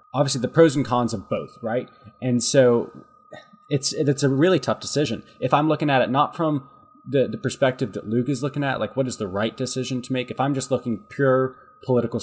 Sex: male